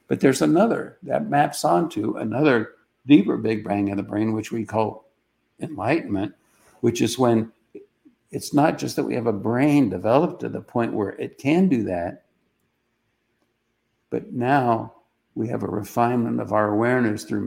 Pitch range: 105-115 Hz